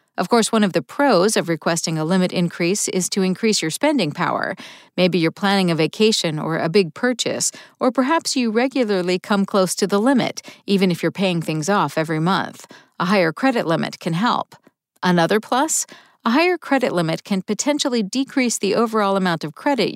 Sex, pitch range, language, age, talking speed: female, 180-250 Hz, English, 50-69, 190 wpm